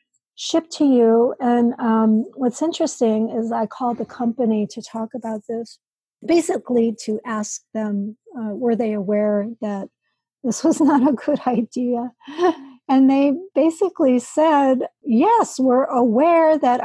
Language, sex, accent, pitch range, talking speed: English, female, American, 230-280 Hz, 140 wpm